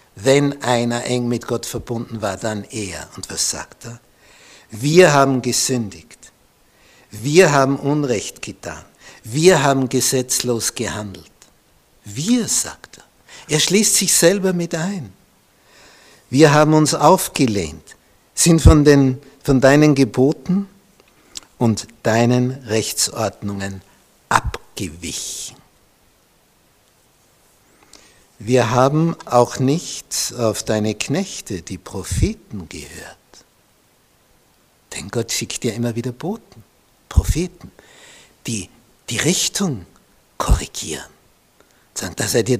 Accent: Austrian